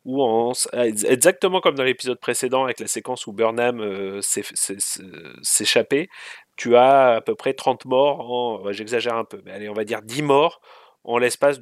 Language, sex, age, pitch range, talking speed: French, male, 30-49, 120-150 Hz, 180 wpm